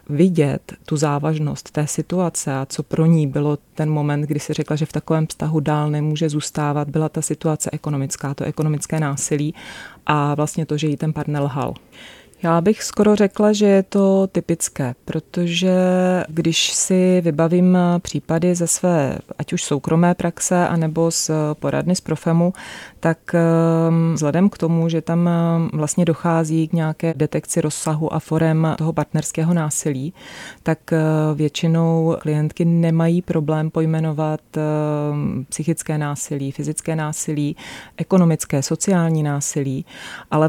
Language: Czech